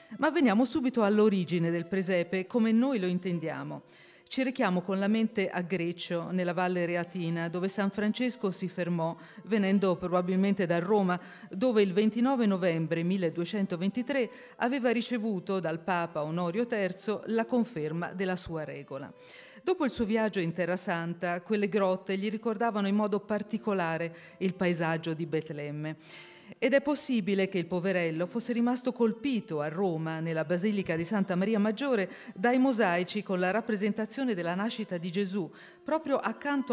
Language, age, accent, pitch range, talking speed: Italian, 40-59, native, 175-235 Hz, 150 wpm